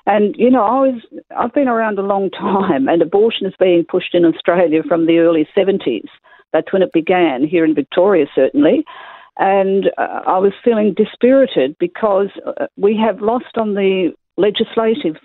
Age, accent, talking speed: 50-69, Australian, 175 wpm